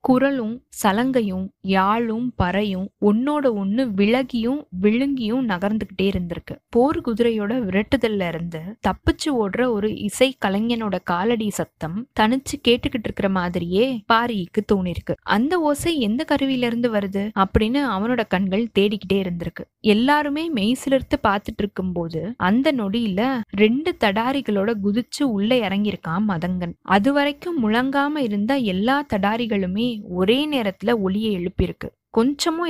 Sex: female